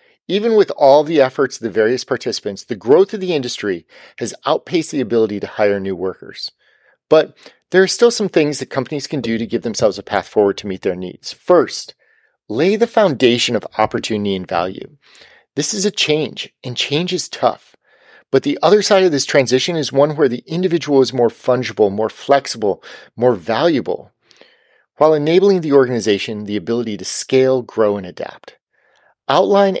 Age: 40-59